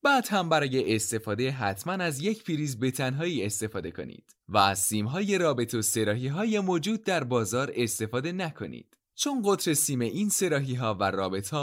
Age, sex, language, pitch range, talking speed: 20-39, male, Persian, 105-170 Hz, 150 wpm